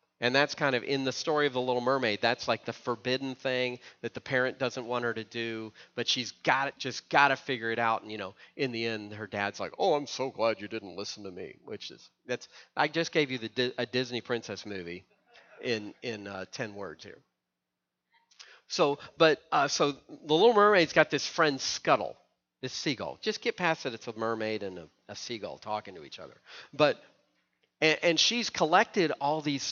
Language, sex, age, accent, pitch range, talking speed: English, male, 40-59, American, 115-165 Hz, 210 wpm